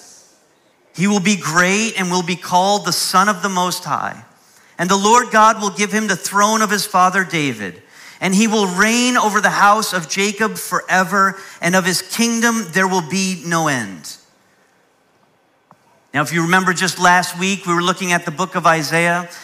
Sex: male